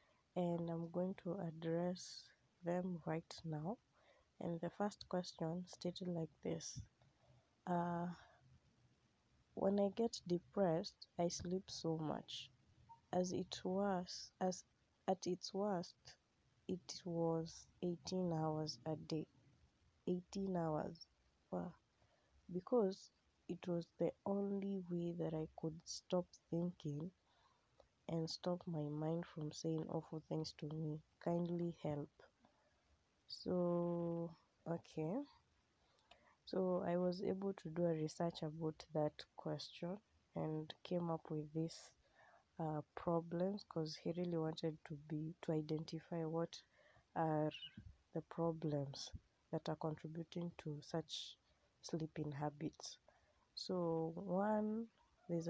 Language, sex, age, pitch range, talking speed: English, female, 20-39, 155-180 Hz, 110 wpm